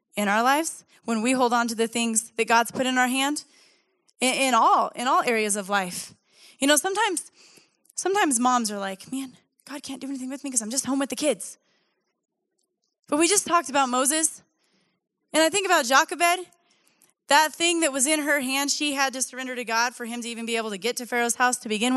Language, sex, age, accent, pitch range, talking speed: English, female, 10-29, American, 225-290 Hz, 220 wpm